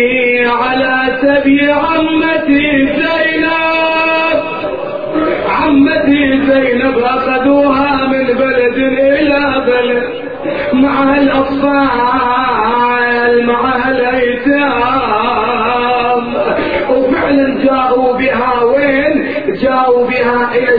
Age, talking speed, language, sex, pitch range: 40-59, 60 wpm, Arabic, male, 225-270 Hz